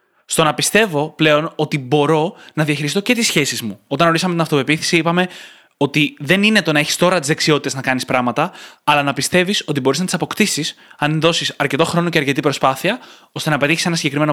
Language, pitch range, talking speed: Greek, 145-180 Hz, 205 wpm